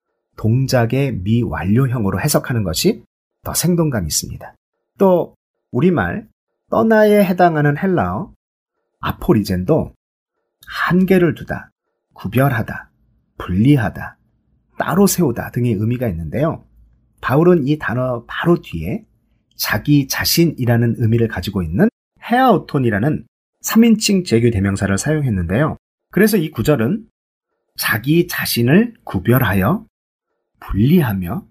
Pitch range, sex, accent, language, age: 105-155 Hz, male, native, Korean, 40-59